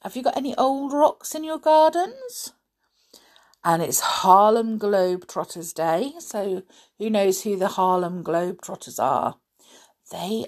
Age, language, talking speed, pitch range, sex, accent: 50-69, English, 130 wpm, 165-225 Hz, female, British